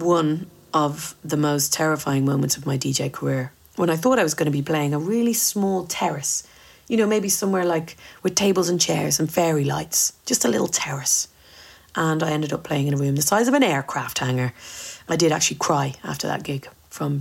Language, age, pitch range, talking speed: English, 40-59, 140-165 Hz, 215 wpm